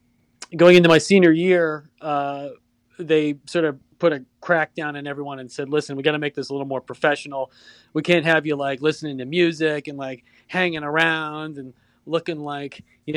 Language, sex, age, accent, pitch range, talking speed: English, male, 30-49, American, 135-165 Hz, 195 wpm